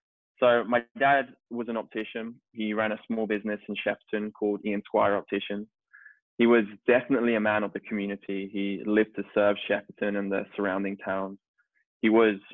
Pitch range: 100-110 Hz